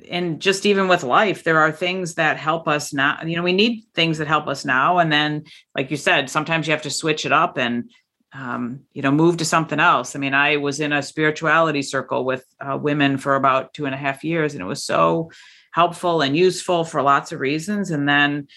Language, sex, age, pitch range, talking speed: English, female, 40-59, 150-195 Hz, 235 wpm